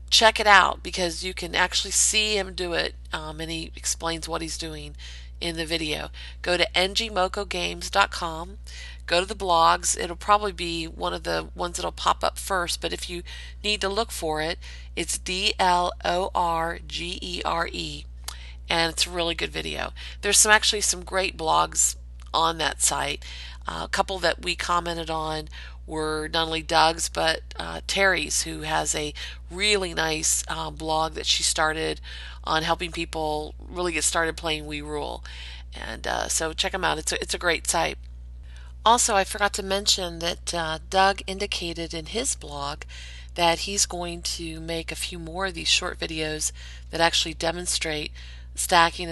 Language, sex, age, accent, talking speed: English, female, 40-59, American, 170 wpm